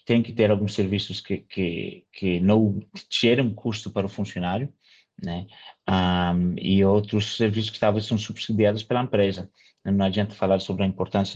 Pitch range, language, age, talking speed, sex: 100-120 Hz, Portuguese, 30-49, 170 wpm, male